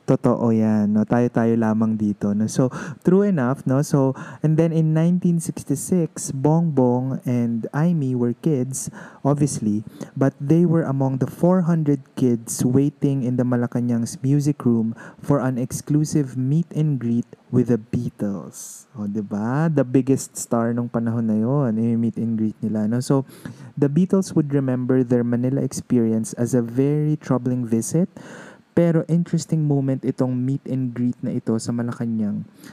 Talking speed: 155 wpm